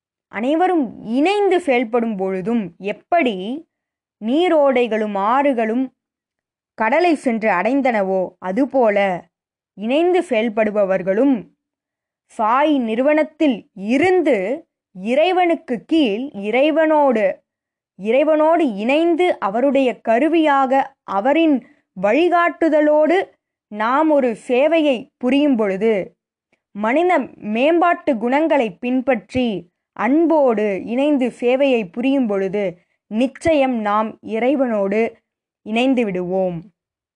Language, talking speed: Tamil, 70 wpm